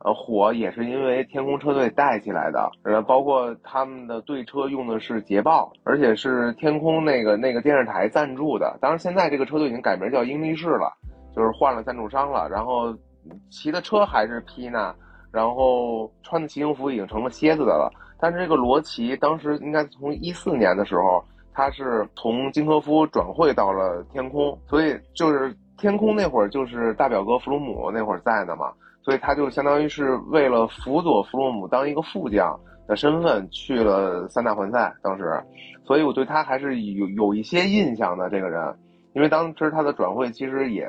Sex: male